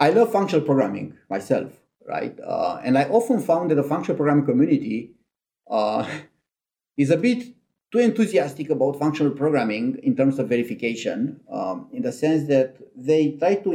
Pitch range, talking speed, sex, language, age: 130-220 Hz, 160 wpm, male, English, 30-49